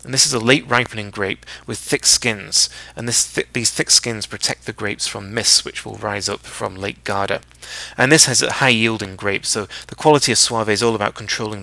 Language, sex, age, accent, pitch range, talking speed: English, male, 30-49, British, 100-120 Hz, 225 wpm